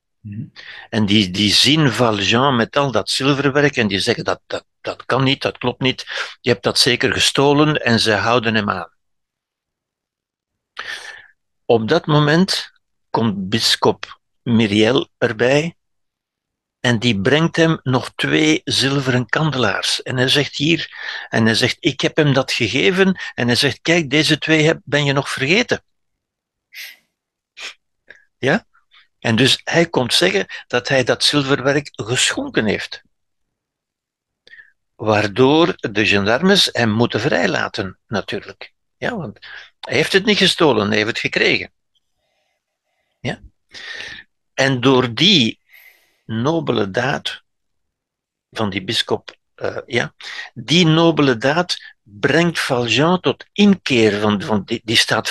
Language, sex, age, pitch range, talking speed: Dutch, male, 60-79, 115-155 Hz, 130 wpm